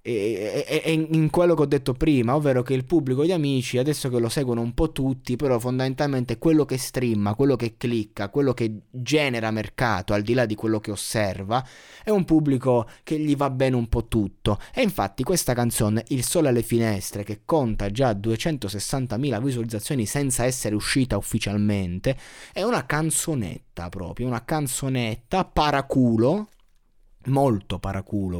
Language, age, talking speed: Italian, 20-39, 165 wpm